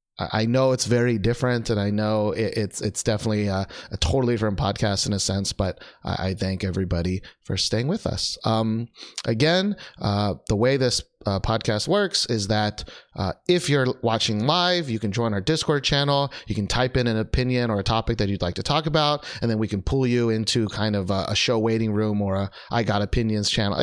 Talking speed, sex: 210 wpm, male